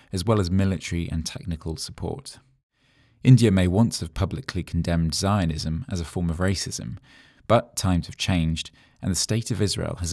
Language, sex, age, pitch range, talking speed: English, male, 20-39, 80-105 Hz, 170 wpm